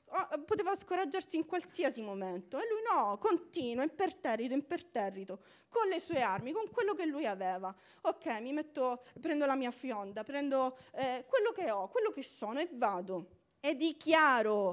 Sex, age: female, 30-49